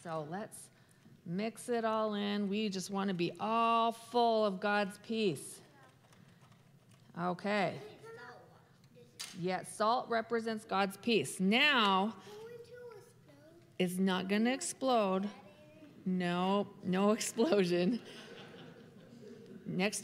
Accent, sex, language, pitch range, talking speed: American, female, English, 195-255 Hz, 95 wpm